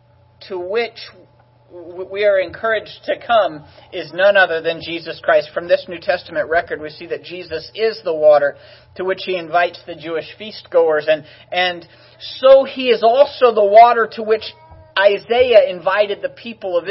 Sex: male